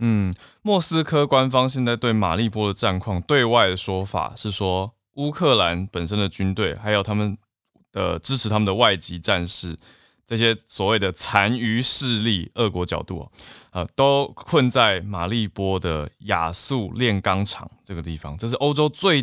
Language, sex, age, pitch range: Chinese, male, 20-39, 90-120 Hz